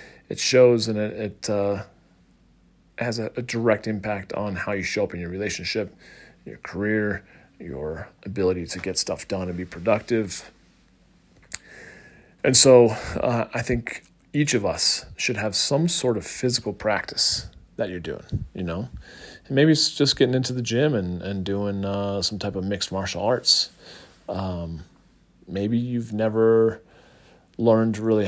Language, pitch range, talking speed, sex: English, 95-115 Hz, 155 wpm, male